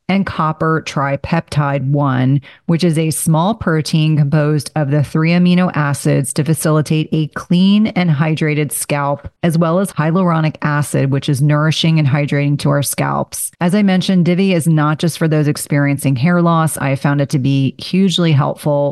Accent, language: American, English